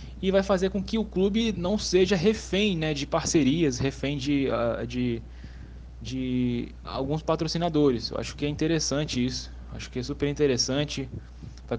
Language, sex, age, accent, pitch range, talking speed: Portuguese, male, 10-29, Brazilian, 125-170 Hz, 165 wpm